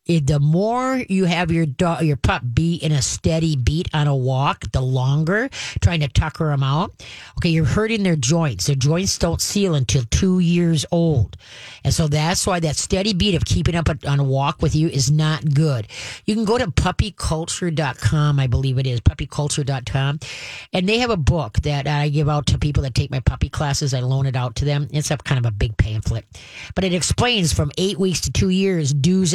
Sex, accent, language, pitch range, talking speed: female, American, English, 140-175 Hz, 215 wpm